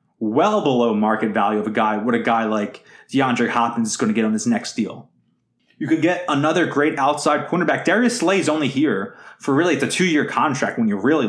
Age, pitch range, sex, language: 20-39, 120-165 Hz, male, English